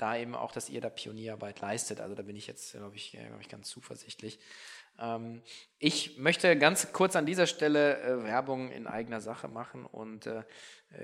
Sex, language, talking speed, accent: male, German, 190 wpm, German